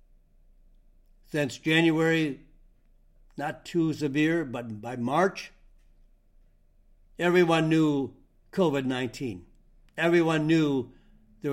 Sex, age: male, 60-79